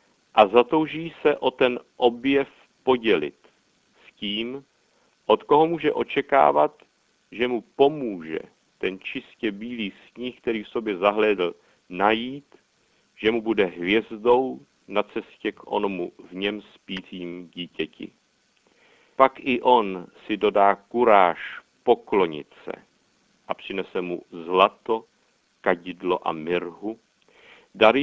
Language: Czech